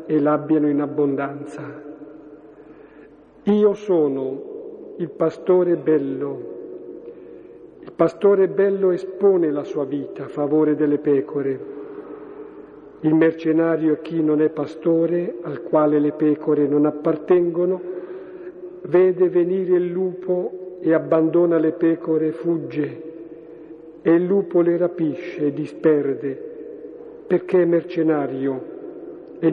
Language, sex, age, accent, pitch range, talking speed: Italian, male, 50-69, native, 150-185 Hz, 110 wpm